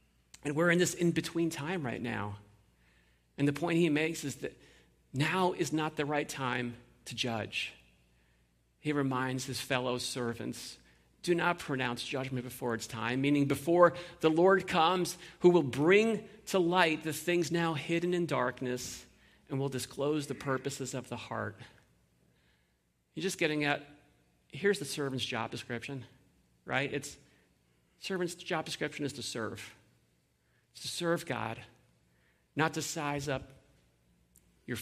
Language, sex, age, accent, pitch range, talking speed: English, male, 40-59, American, 120-165 Hz, 145 wpm